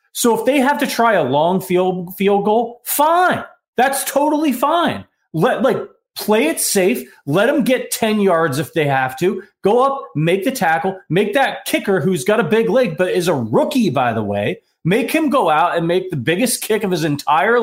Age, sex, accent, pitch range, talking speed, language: 30-49, male, American, 145-220 Hz, 210 wpm, English